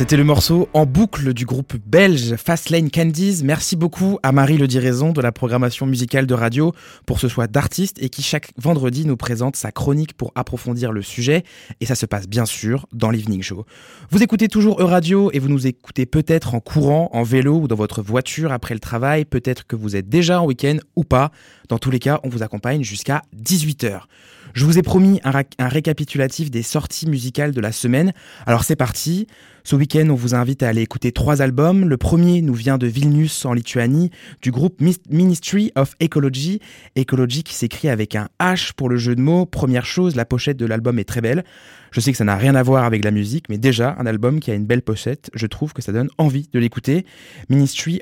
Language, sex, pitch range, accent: French, male, 120-155 Hz, French